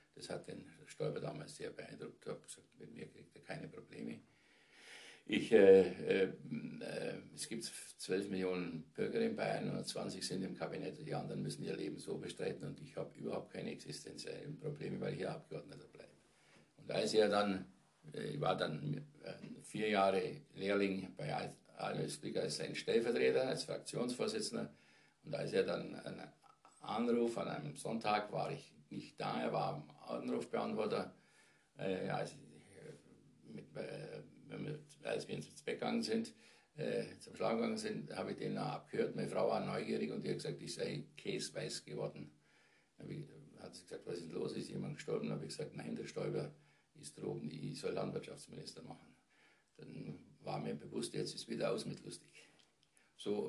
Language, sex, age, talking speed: German, male, 60-79, 165 wpm